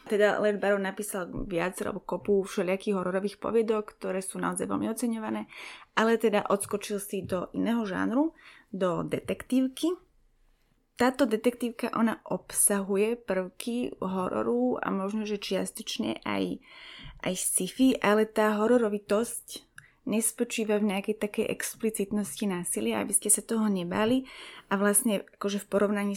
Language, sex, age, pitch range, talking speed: Slovak, female, 20-39, 195-225 Hz, 120 wpm